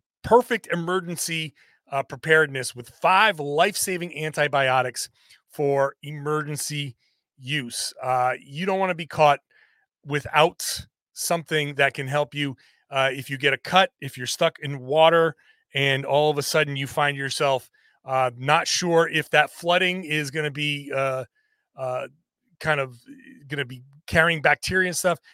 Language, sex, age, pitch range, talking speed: English, male, 30-49, 135-170 Hz, 150 wpm